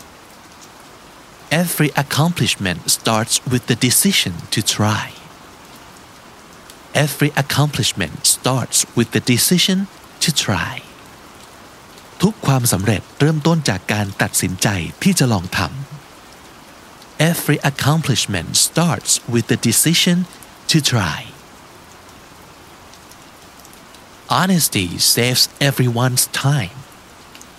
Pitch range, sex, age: 115-150 Hz, male, 50-69